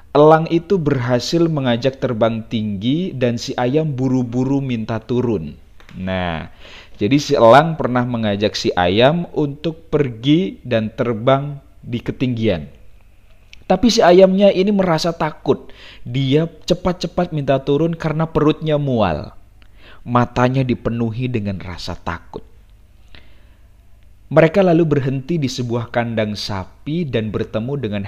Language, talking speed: Indonesian, 115 wpm